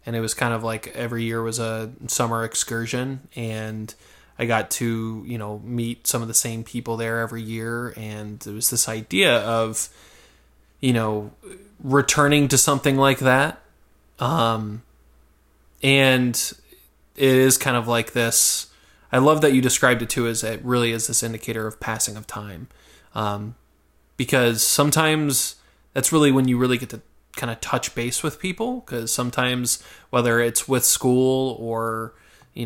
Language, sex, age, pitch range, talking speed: English, male, 20-39, 115-130 Hz, 165 wpm